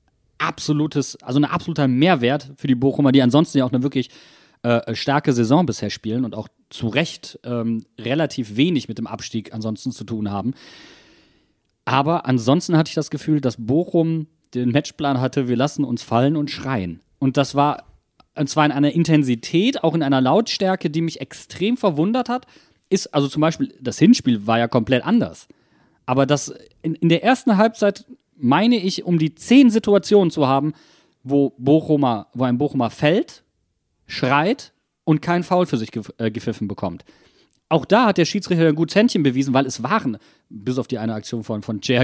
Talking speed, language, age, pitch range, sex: 180 wpm, German, 30-49, 125-165 Hz, male